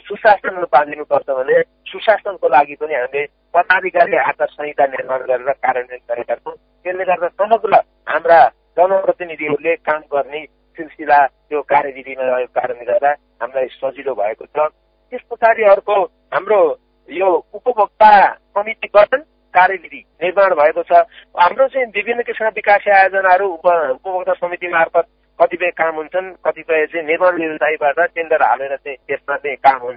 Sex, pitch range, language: male, 145-190 Hz, English